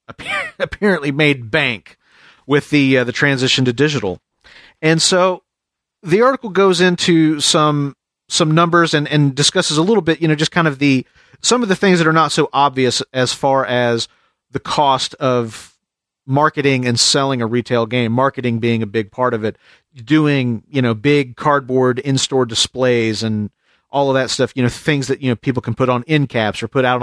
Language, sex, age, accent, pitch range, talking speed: English, male, 40-59, American, 130-155 Hz, 190 wpm